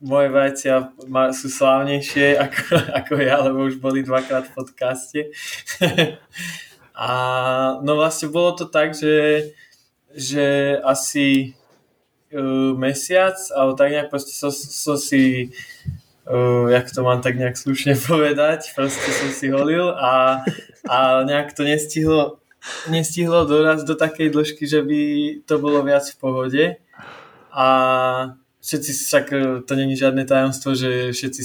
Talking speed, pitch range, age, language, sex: 130 wpm, 130-150 Hz, 20-39, Slovak, male